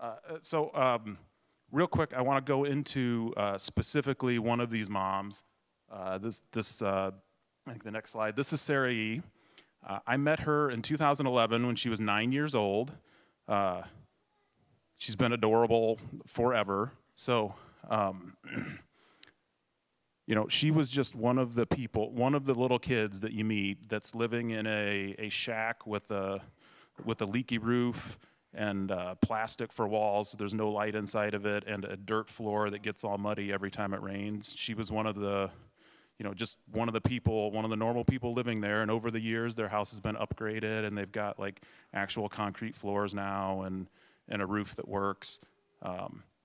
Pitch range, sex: 100-120 Hz, male